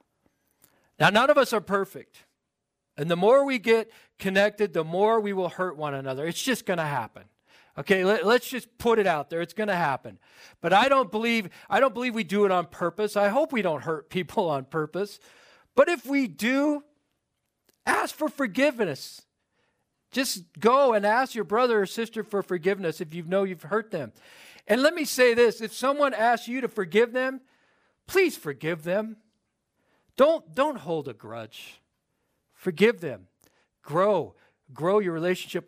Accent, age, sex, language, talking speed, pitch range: American, 40-59, male, English, 175 wpm, 160-230 Hz